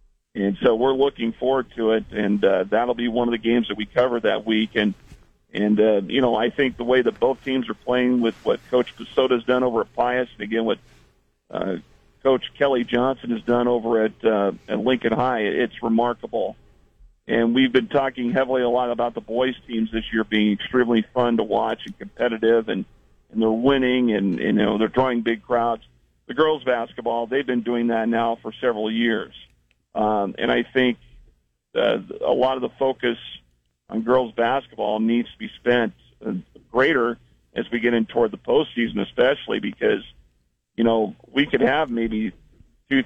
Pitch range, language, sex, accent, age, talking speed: 110-125 Hz, English, male, American, 50-69, 190 wpm